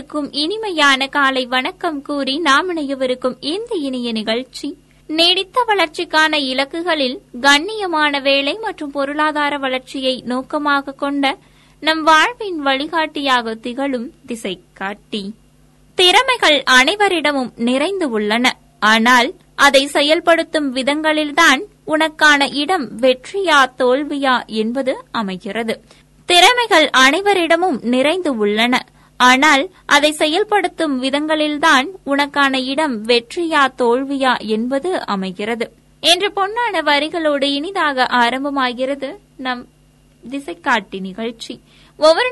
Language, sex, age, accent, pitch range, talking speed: Tamil, female, 20-39, native, 255-320 Hz, 85 wpm